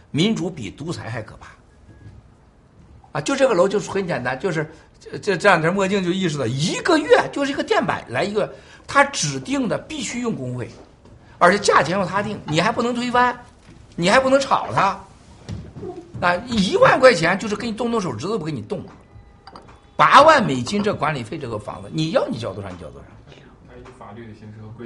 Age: 60-79